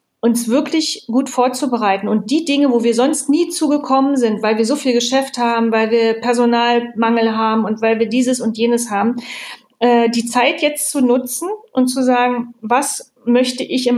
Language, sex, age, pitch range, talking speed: German, female, 40-59, 230-265 Hz, 185 wpm